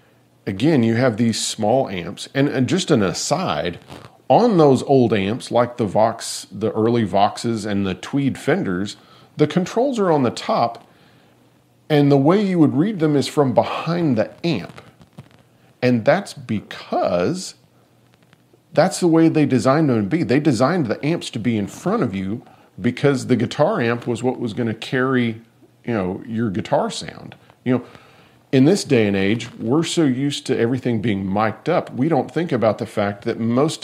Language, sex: English, male